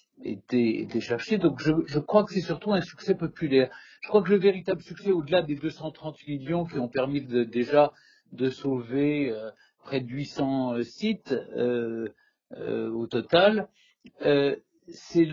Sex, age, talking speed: male, 50-69, 160 wpm